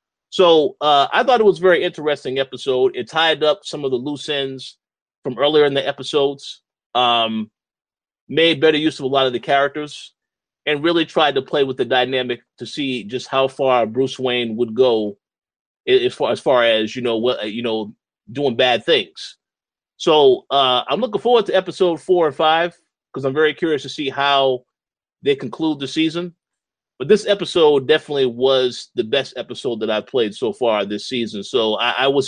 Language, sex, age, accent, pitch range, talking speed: English, male, 30-49, American, 130-165 Hz, 190 wpm